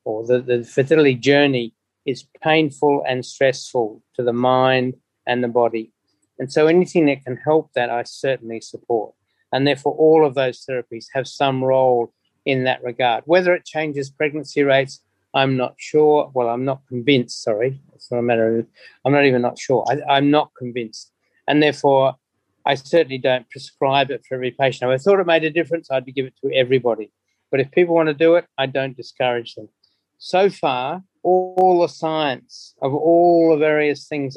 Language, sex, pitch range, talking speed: English, male, 125-145 Hz, 185 wpm